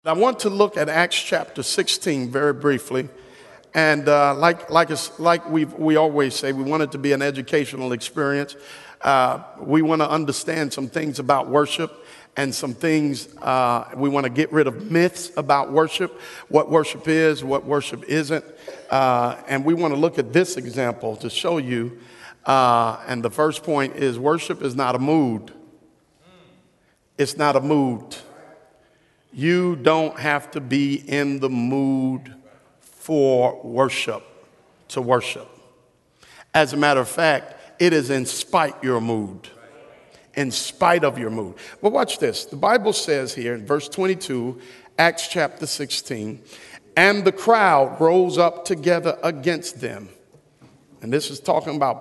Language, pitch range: English, 130-160 Hz